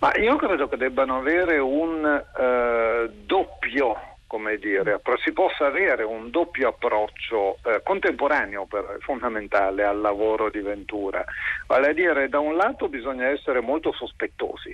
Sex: male